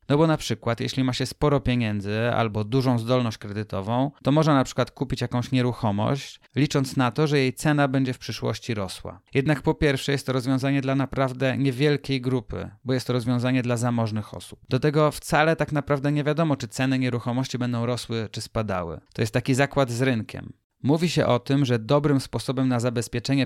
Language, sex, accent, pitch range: Polish, male, native, 115-140 Hz